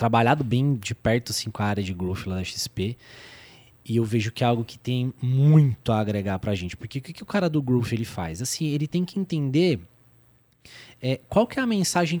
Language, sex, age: Portuguese, male, 20-39